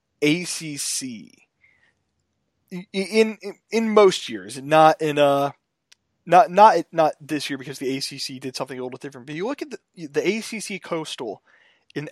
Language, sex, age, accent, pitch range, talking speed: English, male, 20-39, American, 145-195 Hz, 155 wpm